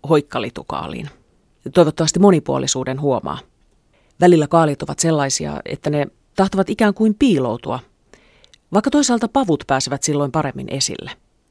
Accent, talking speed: native, 110 wpm